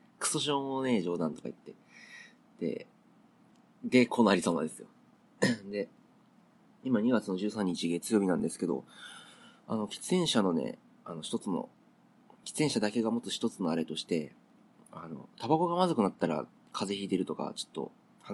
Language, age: Japanese, 40-59